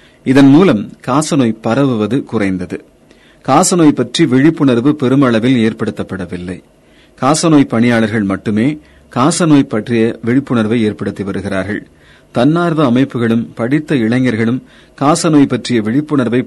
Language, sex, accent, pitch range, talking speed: Tamil, male, native, 110-145 Hz, 90 wpm